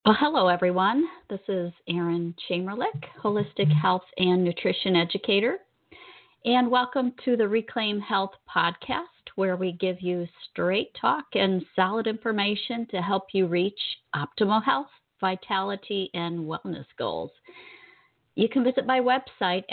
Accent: American